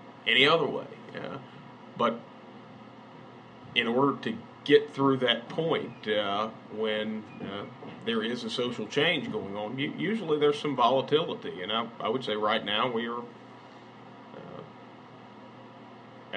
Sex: male